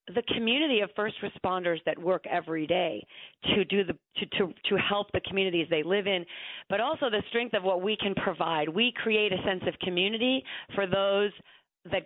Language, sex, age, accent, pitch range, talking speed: English, female, 40-59, American, 180-225 Hz, 195 wpm